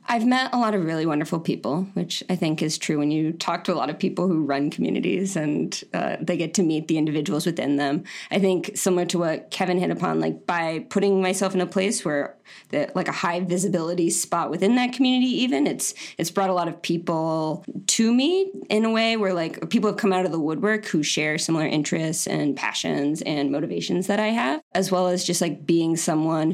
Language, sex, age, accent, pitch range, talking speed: English, female, 20-39, American, 160-200 Hz, 225 wpm